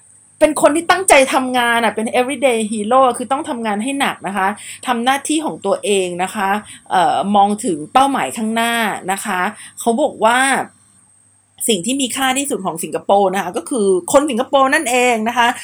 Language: Thai